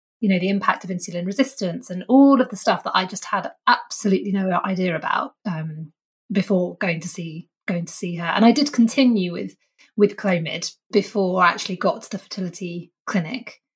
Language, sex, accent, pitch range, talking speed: English, female, British, 185-225 Hz, 190 wpm